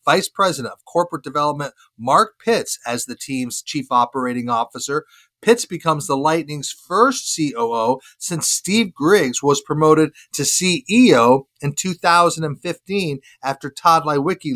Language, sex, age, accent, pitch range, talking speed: English, male, 40-59, American, 140-175 Hz, 130 wpm